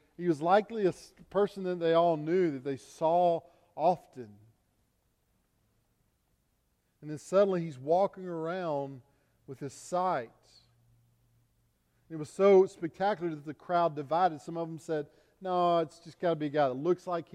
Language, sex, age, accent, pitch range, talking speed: English, male, 40-59, American, 125-175 Hz, 155 wpm